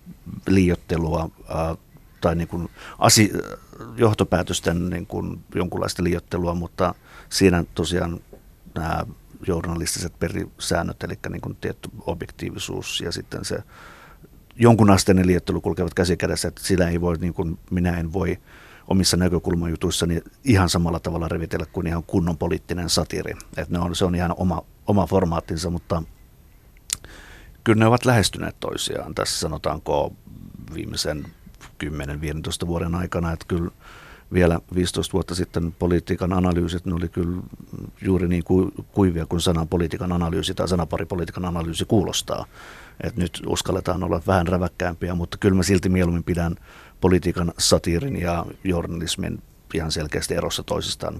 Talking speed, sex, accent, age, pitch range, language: 125 wpm, male, native, 50-69, 85-95 Hz, Finnish